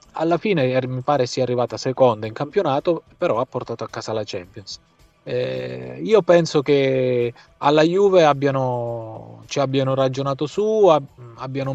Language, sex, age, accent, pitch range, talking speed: Italian, male, 30-49, native, 115-145 Hz, 145 wpm